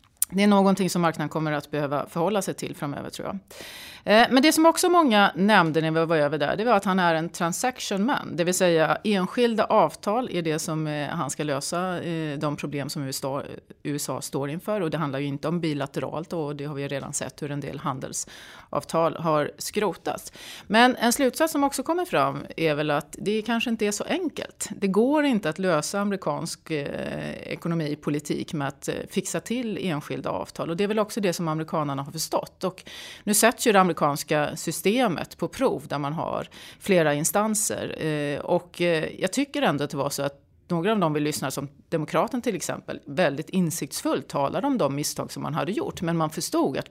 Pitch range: 150-210 Hz